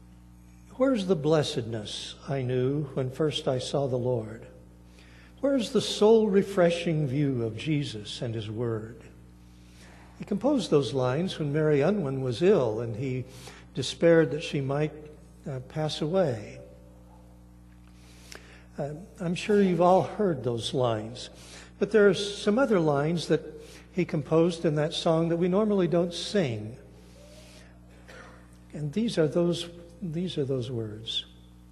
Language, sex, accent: English, male, American